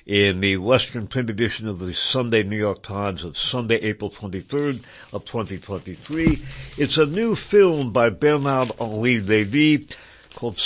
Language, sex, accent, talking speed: English, male, American, 145 wpm